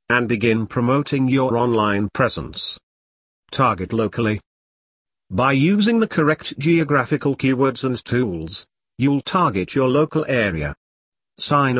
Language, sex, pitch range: English, male, 105-140 Hz